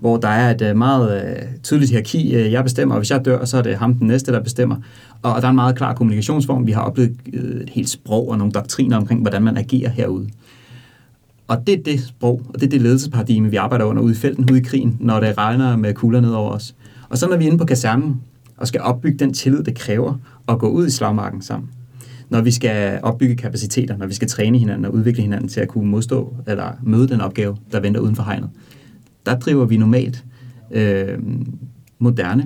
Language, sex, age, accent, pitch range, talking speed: Danish, male, 30-49, native, 110-125 Hz, 225 wpm